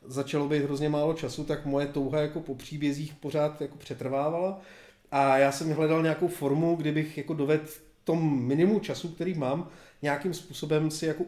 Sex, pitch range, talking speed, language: male, 140-165 Hz, 170 wpm, Czech